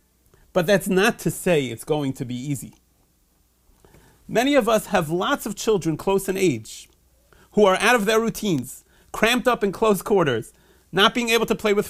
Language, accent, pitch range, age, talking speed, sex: English, American, 135-195 Hz, 40-59, 185 wpm, male